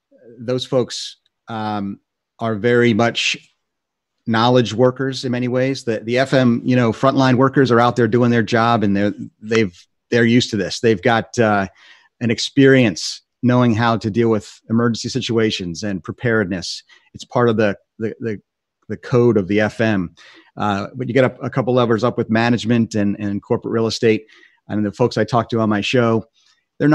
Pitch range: 105-120 Hz